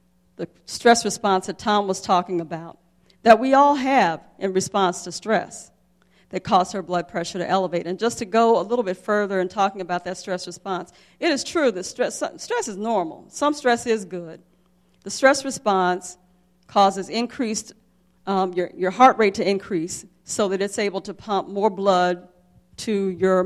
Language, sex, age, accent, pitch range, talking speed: English, female, 50-69, American, 180-215 Hz, 180 wpm